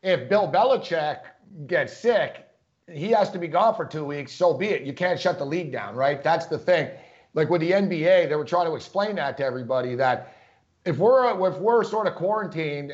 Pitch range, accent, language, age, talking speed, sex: 155-185 Hz, American, English, 50-69, 215 wpm, male